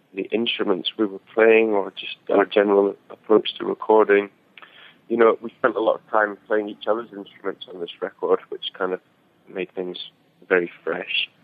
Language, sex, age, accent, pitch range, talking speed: English, male, 20-39, British, 100-130 Hz, 180 wpm